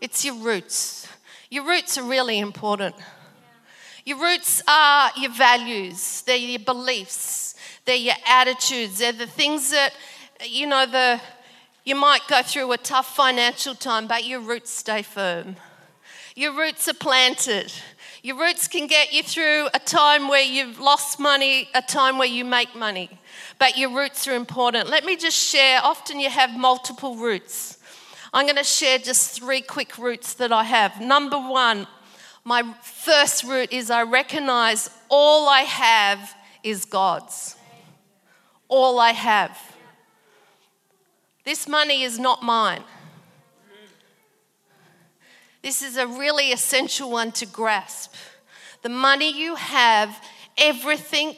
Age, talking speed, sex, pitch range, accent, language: 40-59, 140 wpm, female, 230-280 Hz, Australian, English